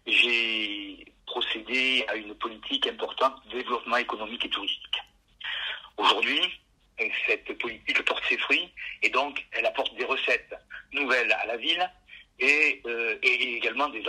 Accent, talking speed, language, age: French, 135 wpm, French, 50-69